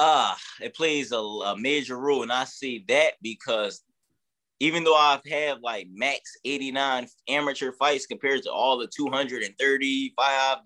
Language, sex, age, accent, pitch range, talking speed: English, male, 20-39, American, 135-175 Hz, 145 wpm